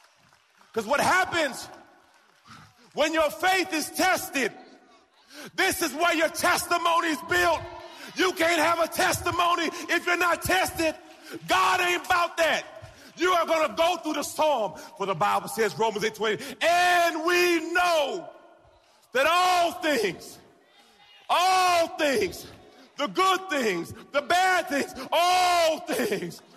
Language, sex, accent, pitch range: English, male, American, 255-350 Hz